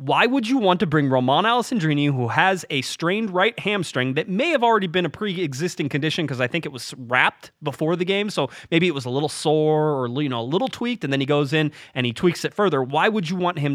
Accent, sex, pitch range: American, male, 120-175 Hz